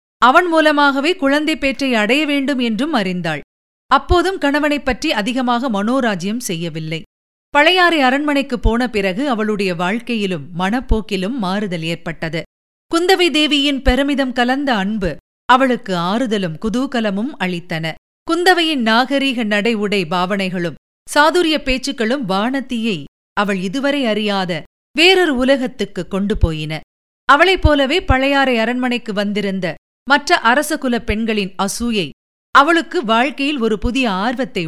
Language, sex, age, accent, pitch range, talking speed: Tamil, female, 50-69, native, 200-280 Hz, 105 wpm